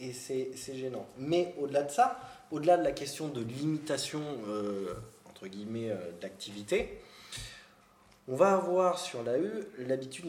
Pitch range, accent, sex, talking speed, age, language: 115-165 Hz, French, male, 145 wpm, 20-39, French